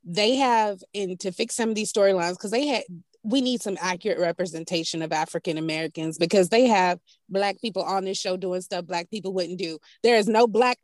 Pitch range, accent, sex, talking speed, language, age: 190-235 Hz, American, female, 210 wpm, English, 30-49